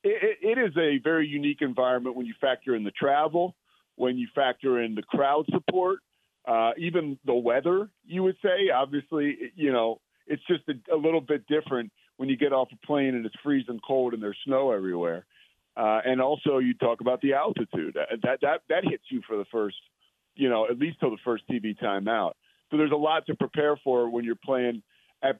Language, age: English, 40-59